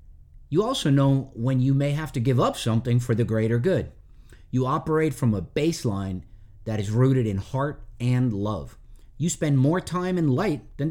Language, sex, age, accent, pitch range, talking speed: English, male, 50-69, American, 110-150 Hz, 185 wpm